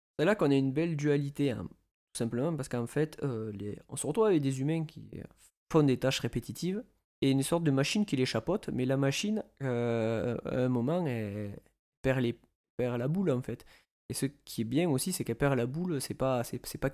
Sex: male